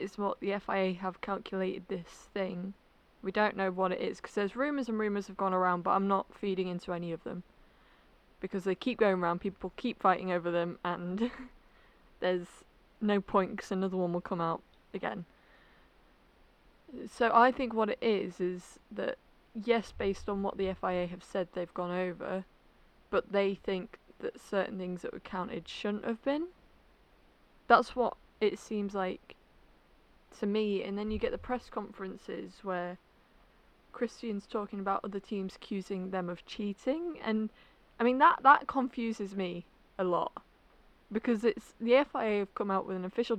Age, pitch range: 20-39, 185-220 Hz